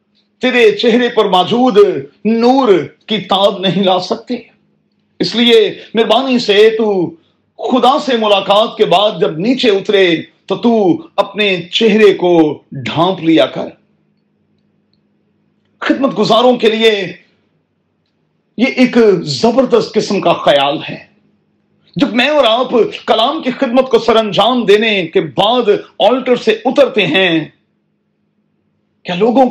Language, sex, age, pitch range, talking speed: Urdu, male, 40-59, 200-245 Hz, 120 wpm